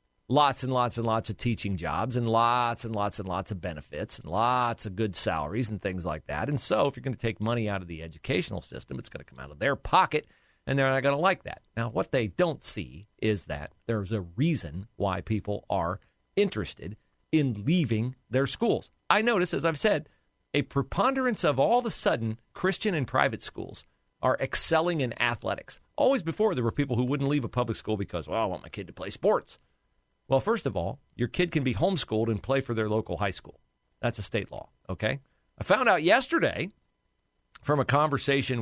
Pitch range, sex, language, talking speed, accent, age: 105-160 Hz, male, English, 215 wpm, American, 40-59